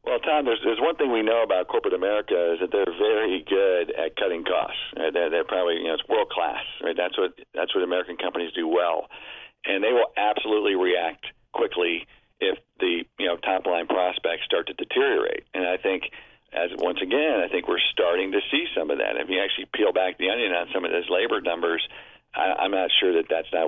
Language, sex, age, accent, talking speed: English, male, 50-69, American, 220 wpm